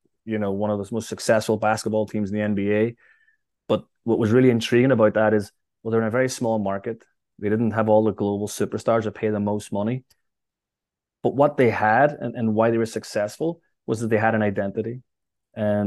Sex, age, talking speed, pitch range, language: male, 20-39, 210 wpm, 105-120 Hz, English